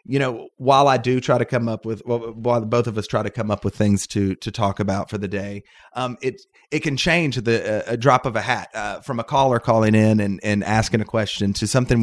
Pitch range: 105-130 Hz